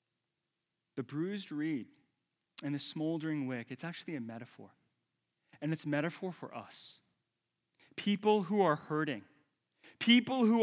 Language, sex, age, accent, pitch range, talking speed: English, male, 30-49, American, 160-215 Hz, 130 wpm